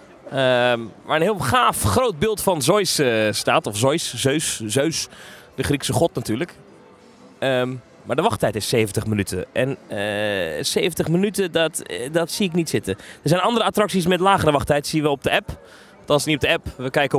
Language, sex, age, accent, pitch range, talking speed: Dutch, male, 20-39, Dutch, 135-205 Hz, 205 wpm